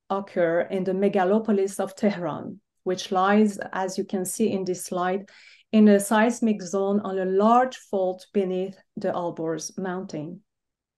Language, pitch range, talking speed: English, 185-225 Hz, 150 wpm